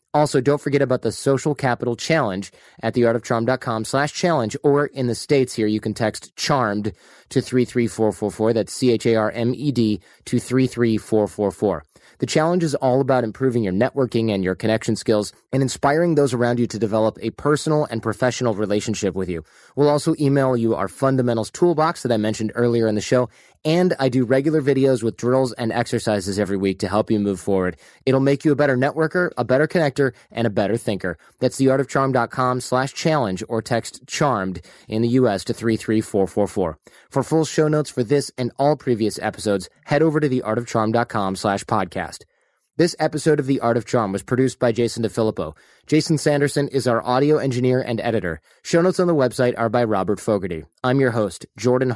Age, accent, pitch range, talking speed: 30-49, American, 110-135 Hz, 180 wpm